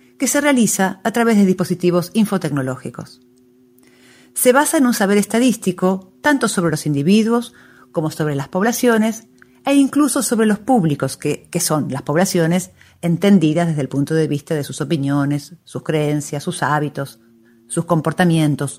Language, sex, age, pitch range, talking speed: Spanish, female, 50-69, 145-205 Hz, 150 wpm